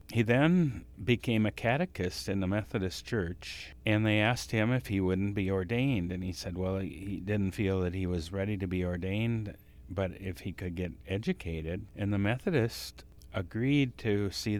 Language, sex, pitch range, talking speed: English, male, 90-105 Hz, 180 wpm